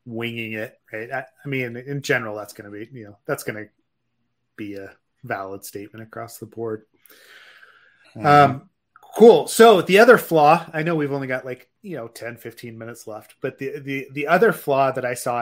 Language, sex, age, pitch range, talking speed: English, male, 30-49, 115-145 Hz, 195 wpm